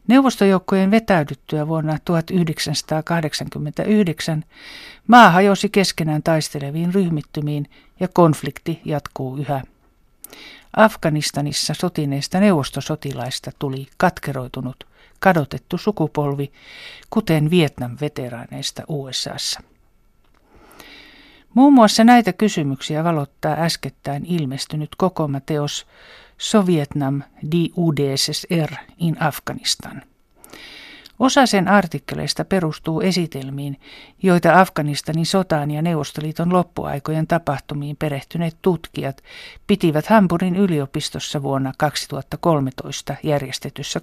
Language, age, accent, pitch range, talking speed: Finnish, 60-79, native, 145-185 Hz, 75 wpm